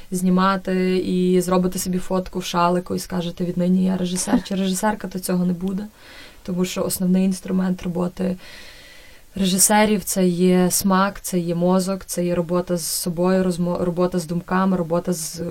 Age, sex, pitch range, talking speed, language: 20-39, female, 175-190 Hz, 160 wpm, Ukrainian